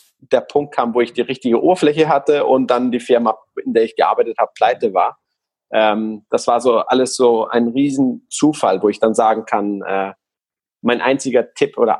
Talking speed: 180 wpm